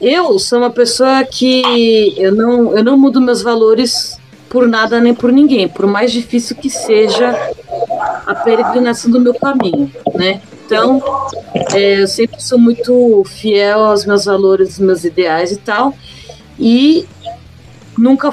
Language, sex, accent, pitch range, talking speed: Portuguese, female, Brazilian, 180-240 Hz, 145 wpm